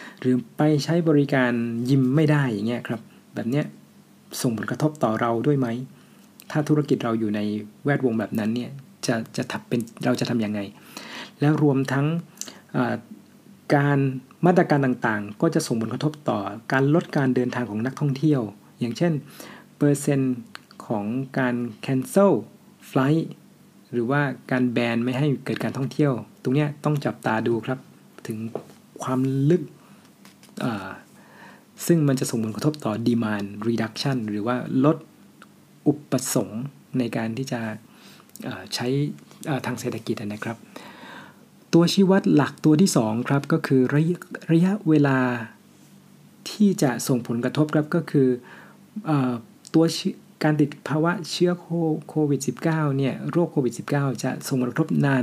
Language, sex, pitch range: Thai, male, 120-155 Hz